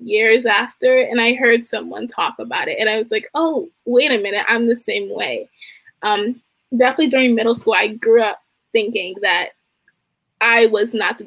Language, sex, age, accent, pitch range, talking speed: English, female, 20-39, American, 225-300 Hz, 185 wpm